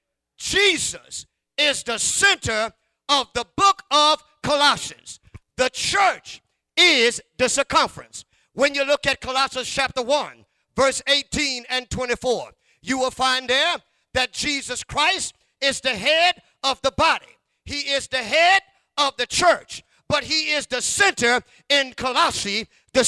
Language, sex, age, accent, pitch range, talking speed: English, male, 50-69, American, 260-325 Hz, 140 wpm